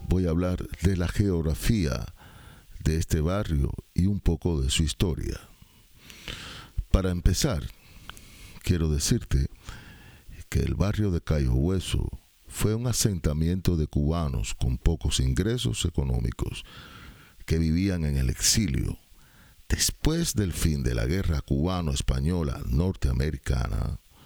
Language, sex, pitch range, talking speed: Spanish, male, 75-100 Hz, 115 wpm